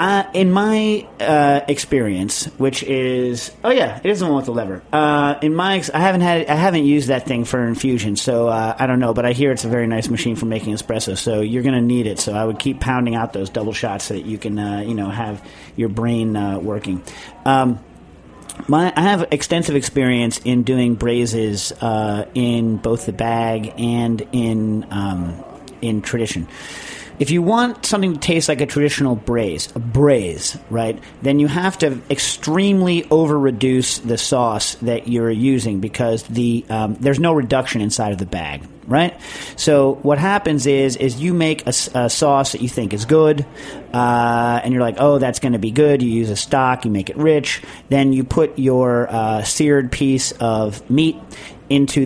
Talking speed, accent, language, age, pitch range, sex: 195 wpm, American, English, 40-59, 115-145 Hz, male